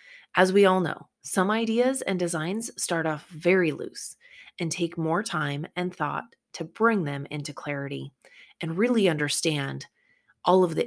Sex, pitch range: female, 165-230 Hz